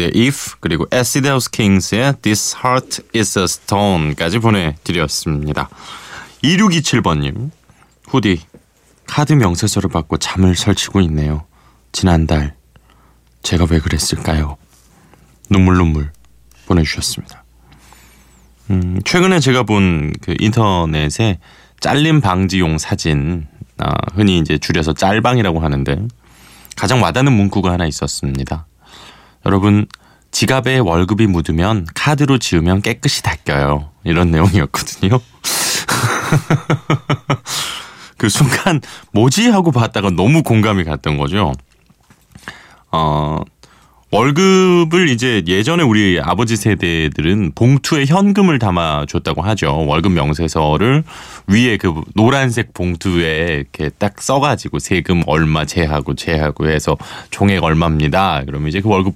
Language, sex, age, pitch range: Korean, male, 20-39, 80-120 Hz